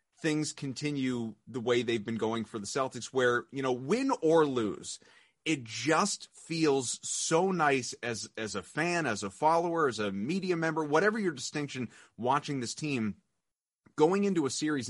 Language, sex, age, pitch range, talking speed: English, male, 30-49, 120-155 Hz, 170 wpm